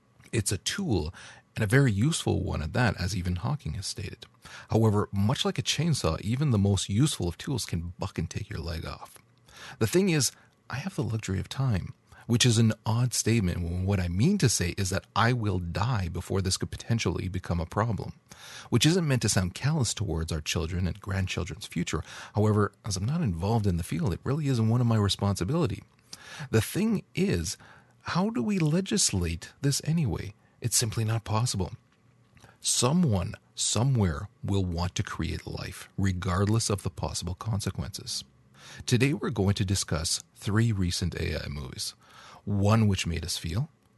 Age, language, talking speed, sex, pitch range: 40-59, English, 180 wpm, male, 90-125 Hz